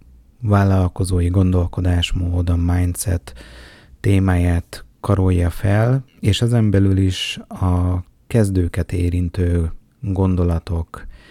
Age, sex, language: 30-49, male, Hungarian